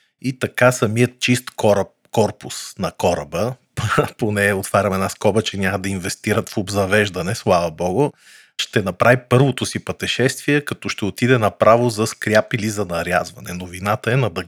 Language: Bulgarian